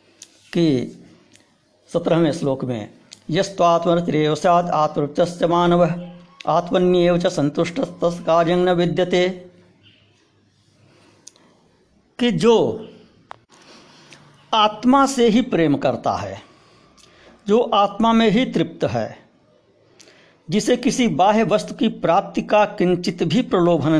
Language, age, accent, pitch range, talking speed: Hindi, 60-79, native, 145-215 Hz, 90 wpm